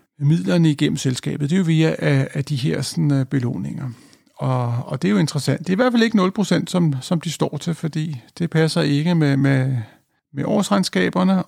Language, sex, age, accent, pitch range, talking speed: Danish, male, 50-69, native, 140-180 Hz, 190 wpm